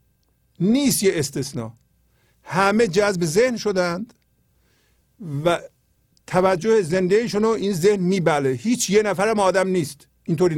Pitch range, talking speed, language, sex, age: 135-180 Hz, 110 wpm, Persian, male, 50-69